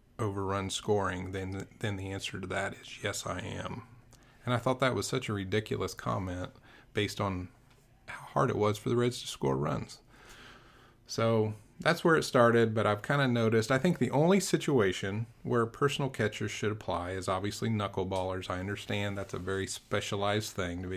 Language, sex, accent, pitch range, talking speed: English, male, American, 95-120 Hz, 185 wpm